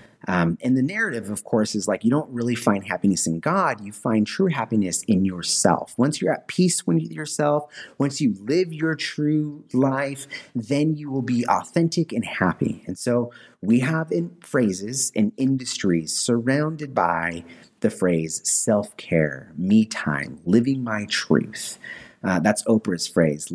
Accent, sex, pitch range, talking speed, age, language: American, male, 90-140 Hz, 160 wpm, 30-49, English